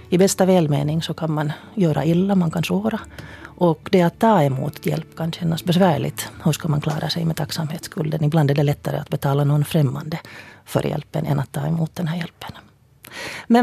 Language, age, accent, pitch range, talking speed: Finnish, 40-59, native, 150-180 Hz, 200 wpm